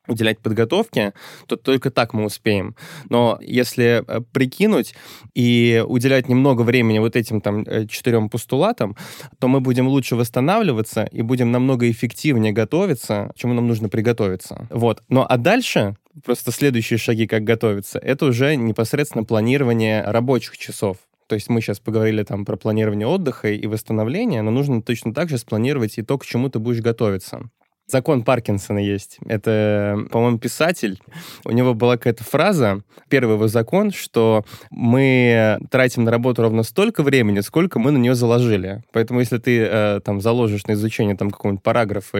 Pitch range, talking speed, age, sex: 110-130 Hz, 155 wpm, 20-39, male